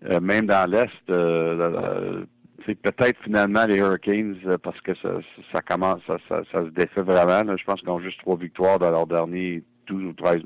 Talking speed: 220 wpm